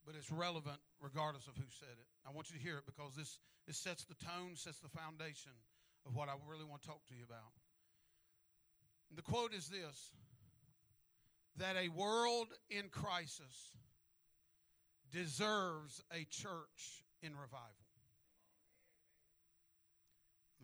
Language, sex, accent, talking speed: English, male, American, 140 wpm